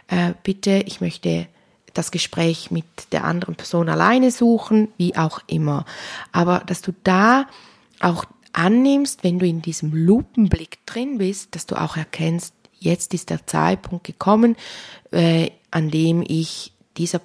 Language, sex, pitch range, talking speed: German, female, 150-180 Hz, 145 wpm